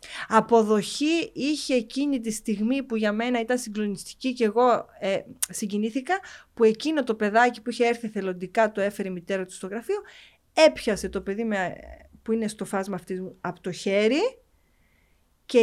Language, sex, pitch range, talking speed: Greek, female, 200-275 Hz, 160 wpm